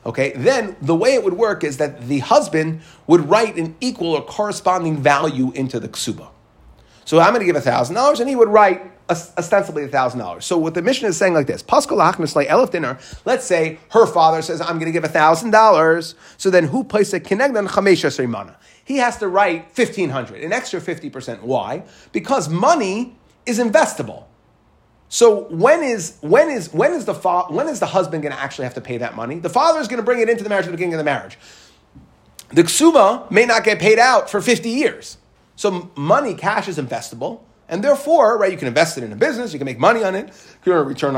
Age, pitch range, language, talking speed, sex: 30-49, 155-230 Hz, English, 225 wpm, male